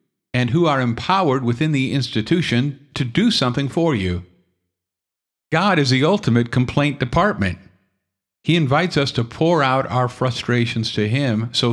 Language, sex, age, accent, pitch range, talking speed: English, male, 50-69, American, 110-145 Hz, 150 wpm